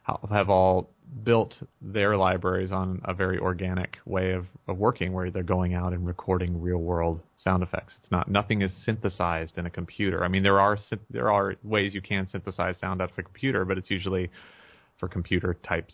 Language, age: English, 30-49